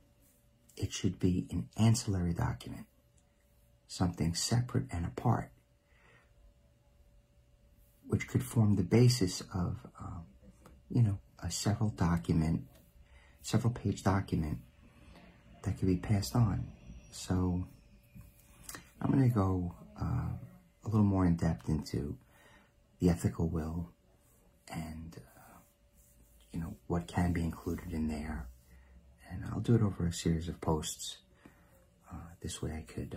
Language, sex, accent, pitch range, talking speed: English, male, American, 75-100 Hz, 120 wpm